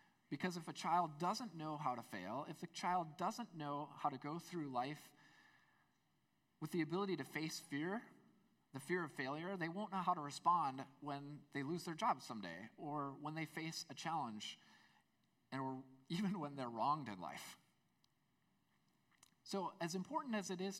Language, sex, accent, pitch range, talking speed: English, male, American, 140-200 Hz, 175 wpm